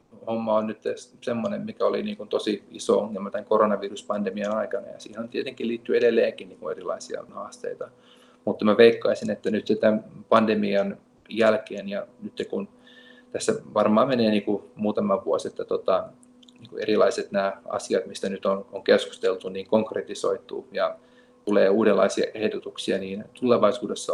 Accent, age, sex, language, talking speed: native, 30-49, male, Finnish, 125 wpm